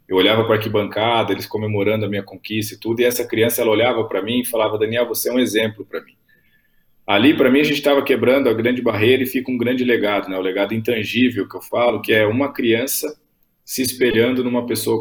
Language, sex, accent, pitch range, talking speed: Portuguese, male, Brazilian, 110-135 Hz, 230 wpm